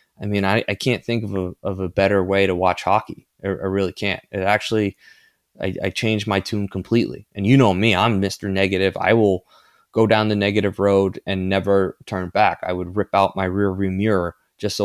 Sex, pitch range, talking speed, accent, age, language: male, 95-110 Hz, 220 wpm, American, 20-39, English